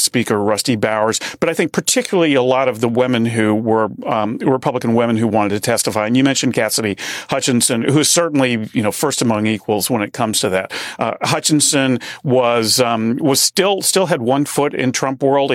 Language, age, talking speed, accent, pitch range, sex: English, 40-59, 200 wpm, American, 115-140 Hz, male